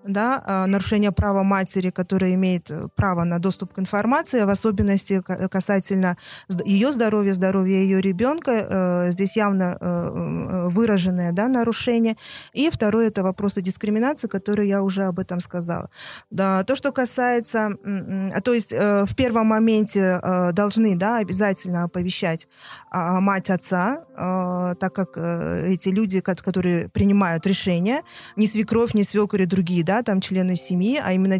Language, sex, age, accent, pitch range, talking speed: Russian, female, 20-39, native, 180-215 Hz, 130 wpm